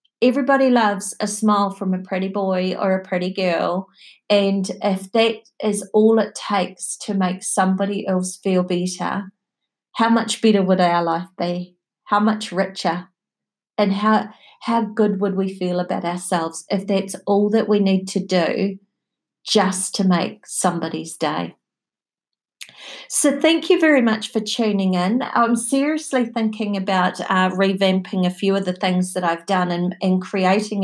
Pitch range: 185-220 Hz